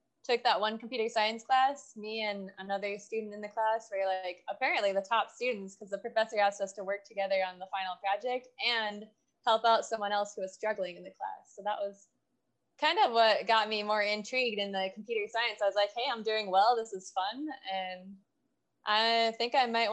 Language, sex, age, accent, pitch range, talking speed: English, female, 20-39, American, 190-230 Hz, 215 wpm